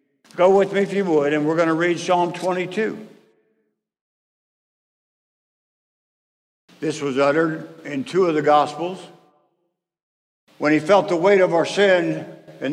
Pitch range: 160-215 Hz